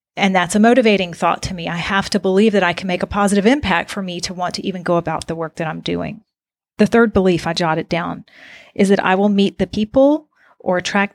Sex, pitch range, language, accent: female, 175-205 Hz, English, American